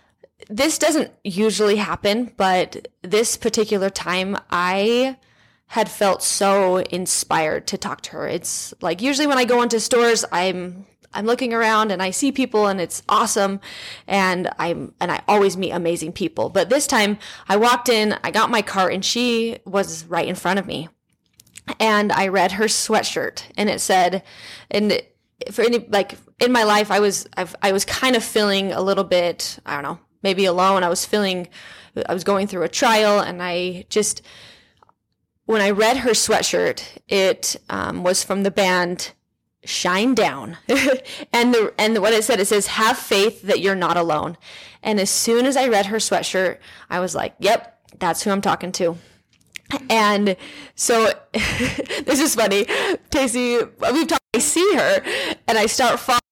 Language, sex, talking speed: English, female, 175 wpm